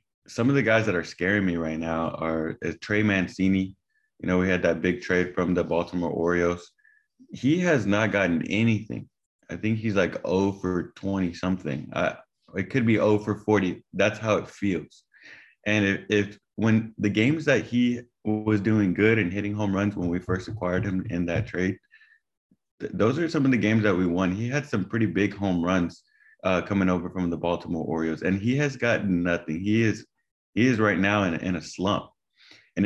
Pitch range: 90-110 Hz